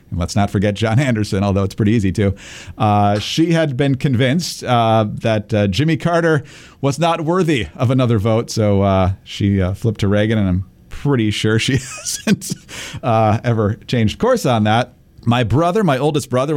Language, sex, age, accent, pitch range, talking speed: English, male, 40-59, American, 100-135 Hz, 180 wpm